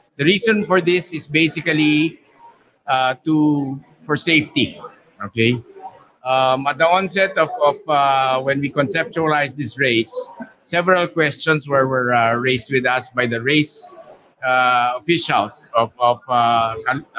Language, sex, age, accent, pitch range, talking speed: English, male, 50-69, Filipino, 125-160 Hz, 135 wpm